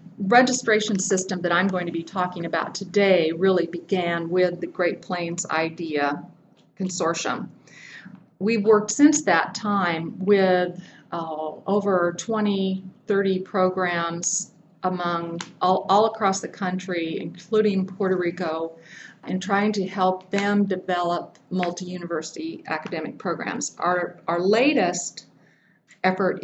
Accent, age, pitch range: American, 50-69, 165-190 Hz